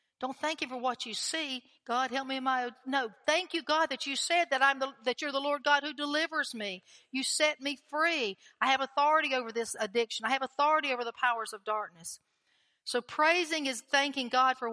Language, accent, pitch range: English, American, 205-270 Hz